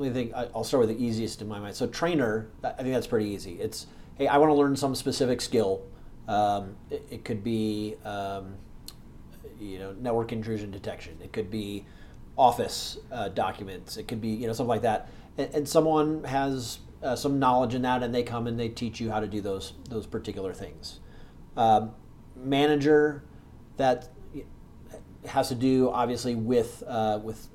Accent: American